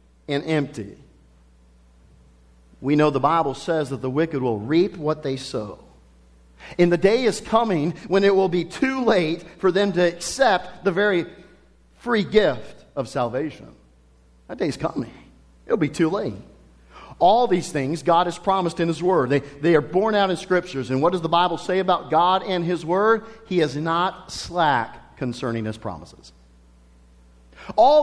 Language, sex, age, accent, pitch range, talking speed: English, male, 50-69, American, 120-190 Hz, 165 wpm